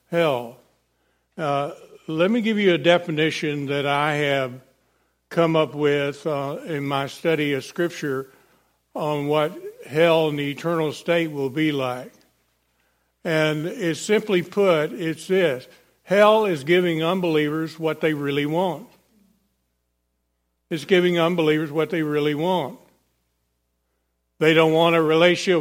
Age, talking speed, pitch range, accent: 60-79, 130 wpm, 135-180 Hz, American